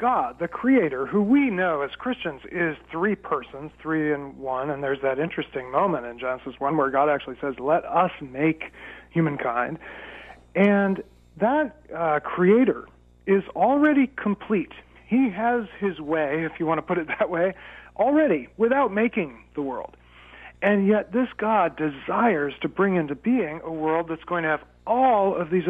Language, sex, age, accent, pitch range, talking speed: English, male, 40-59, American, 145-210 Hz, 170 wpm